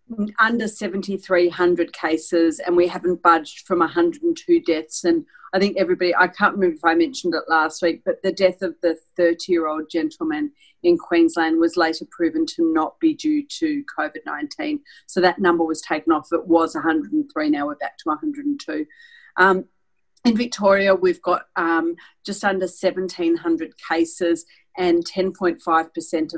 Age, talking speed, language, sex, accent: 40-59, 150 wpm, English, female, Australian